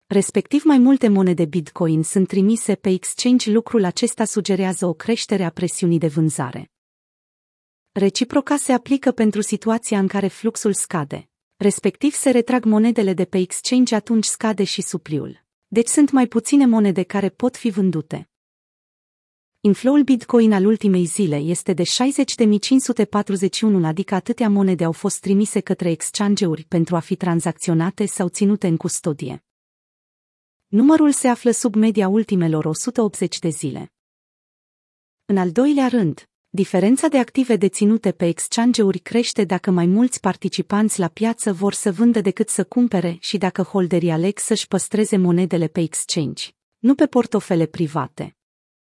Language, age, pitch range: Romanian, 30-49, 185-230 Hz